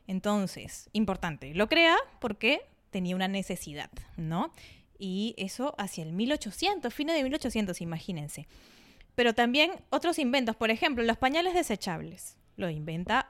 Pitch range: 195-260 Hz